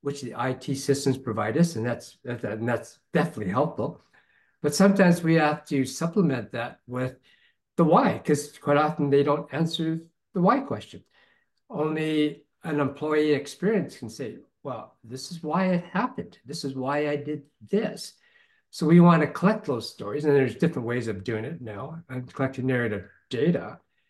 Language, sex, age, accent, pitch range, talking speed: English, male, 60-79, American, 135-170 Hz, 170 wpm